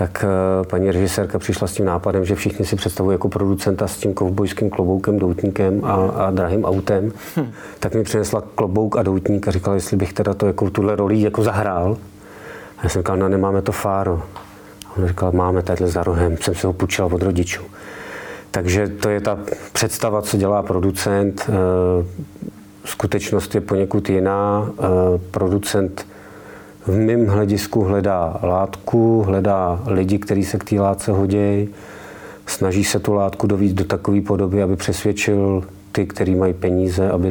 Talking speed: 160 wpm